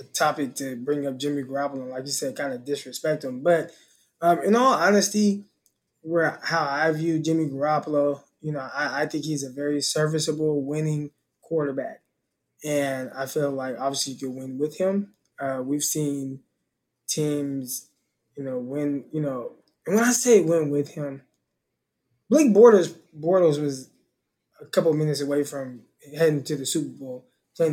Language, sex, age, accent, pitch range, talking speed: English, male, 20-39, American, 145-185 Hz, 165 wpm